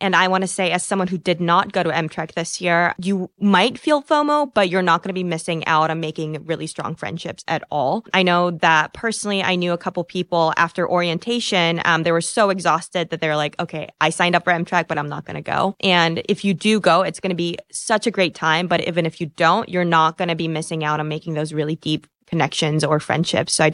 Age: 20-39